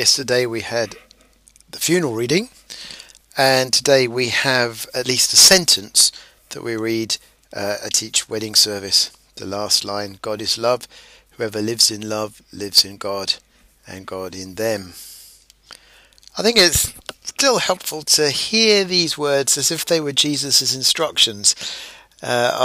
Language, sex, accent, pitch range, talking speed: English, male, British, 110-140 Hz, 145 wpm